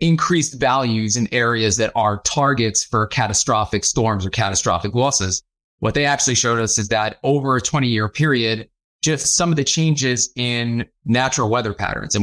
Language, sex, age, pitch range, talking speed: English, male, 30-49, 110-135 Hz, 170 wpm